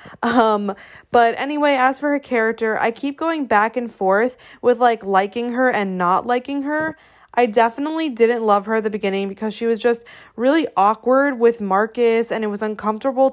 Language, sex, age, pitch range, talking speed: English, female, 20-39, 200-250 Hz, 185 wpm